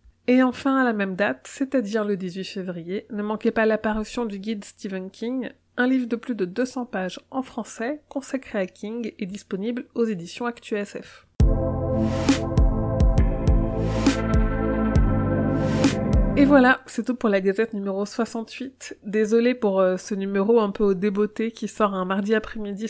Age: 30-49